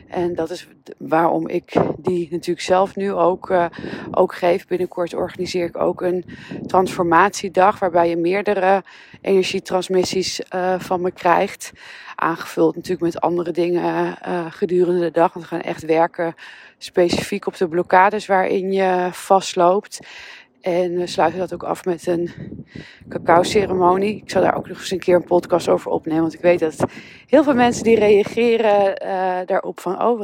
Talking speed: 165 wpm